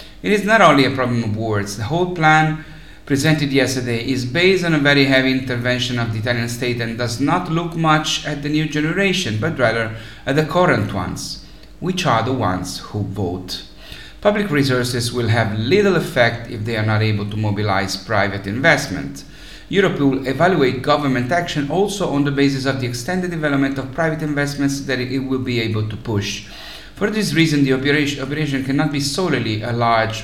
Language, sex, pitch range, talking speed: English, male, 110-150 Hz, 185 wpm